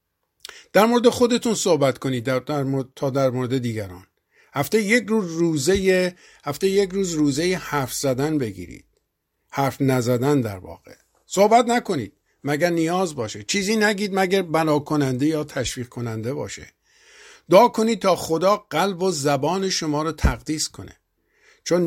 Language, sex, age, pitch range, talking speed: Persian, male, 50-69, 125-170 Hz, 140 wpm